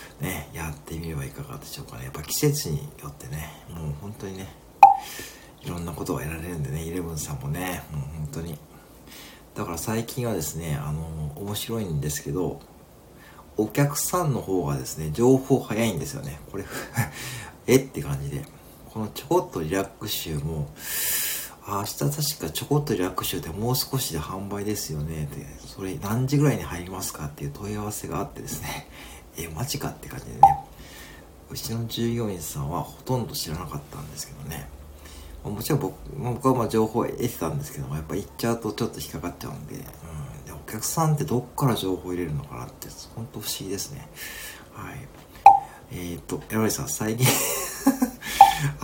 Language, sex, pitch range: Japanese, male, 80-135 Hz